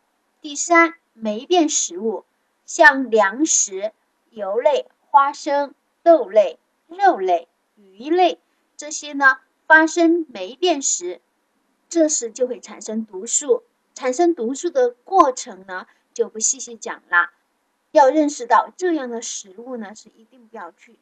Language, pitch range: Chinese, 225-335 Hz